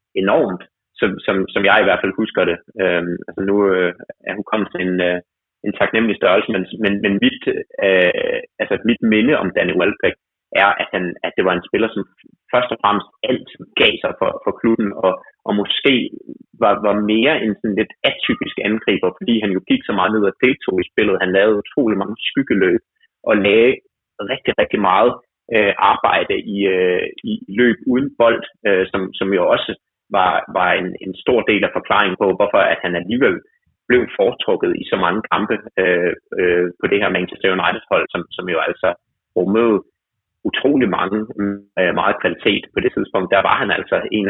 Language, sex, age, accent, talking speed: Danish, male, 30-49, native, 190 wpm